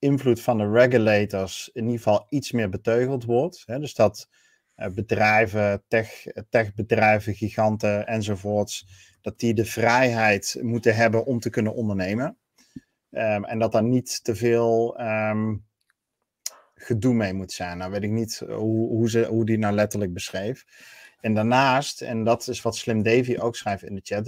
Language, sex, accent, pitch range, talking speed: Dutch, male, Dutch, 105-120 Hz, 165 wpm